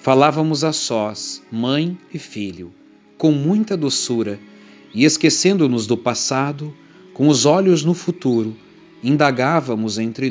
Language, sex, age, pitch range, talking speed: Portuguese, male, 50-69, 110-145 Hz, 115 wpm